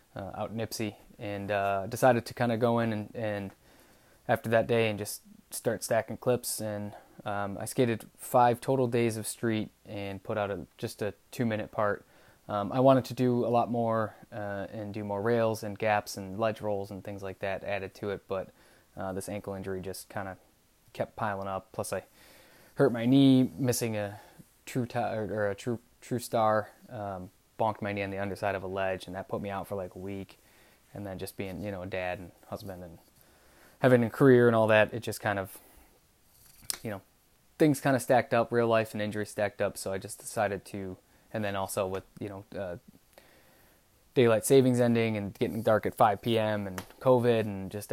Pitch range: 100-120 Hz